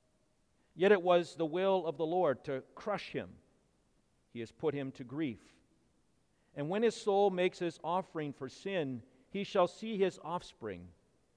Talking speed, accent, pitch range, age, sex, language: 165 wpm, American, 125-175 Hz, 50-69, male, English